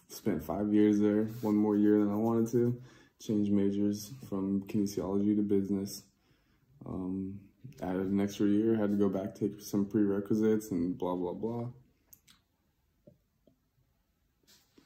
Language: English